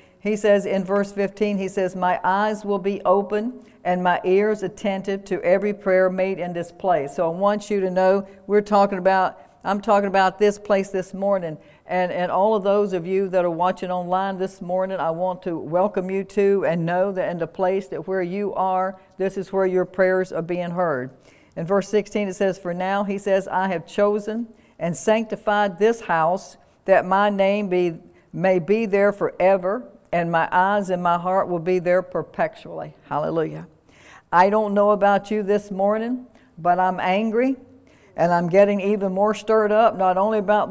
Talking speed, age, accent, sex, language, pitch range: 195 wpm, 60-79, American, female, English, 185-205 Hz